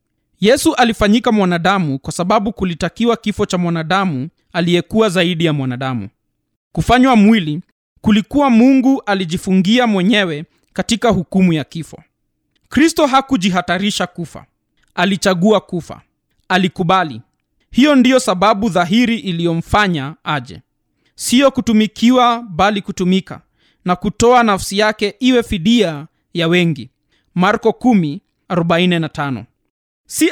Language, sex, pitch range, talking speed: Swahili, male, 170-230 Hz, 100 wpm